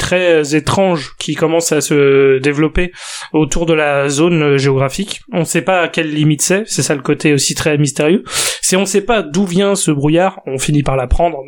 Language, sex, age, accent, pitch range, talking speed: French, male, 20-39, French, 150-180 Hz, 210 wpm